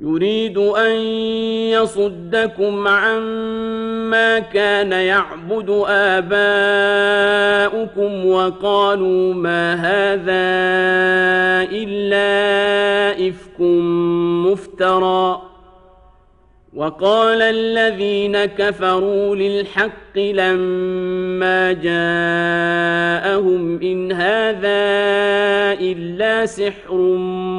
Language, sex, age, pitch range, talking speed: English, male, 40-59, 185-205 Hz, 50 wpm